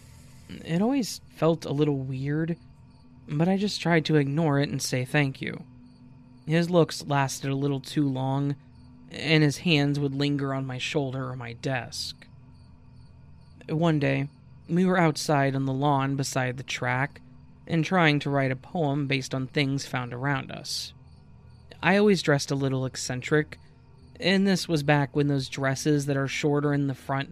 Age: 20-39